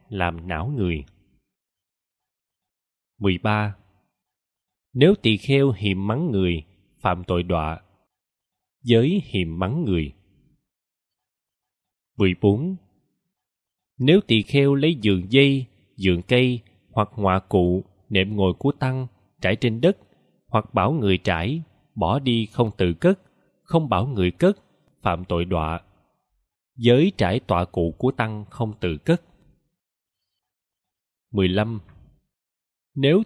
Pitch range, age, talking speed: 95-135 Hz, 20-39, 115 wpm